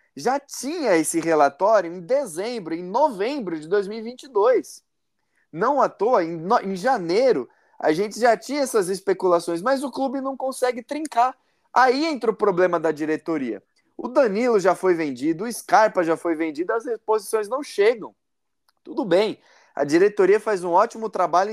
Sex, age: male, 20-39